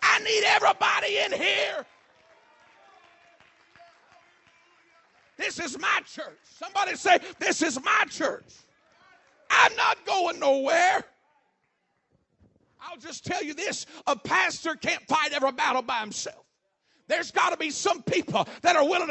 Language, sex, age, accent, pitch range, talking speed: English, male, 50-69, American, 310-370 Hz, 130 wpm